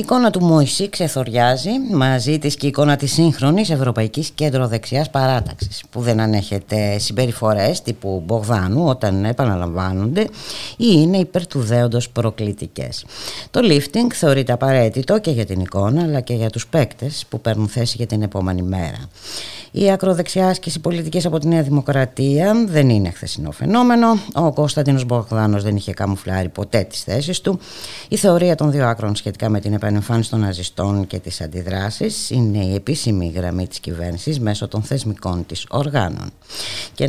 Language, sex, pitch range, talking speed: Greek, female, 100-150 Hz, 155 wpm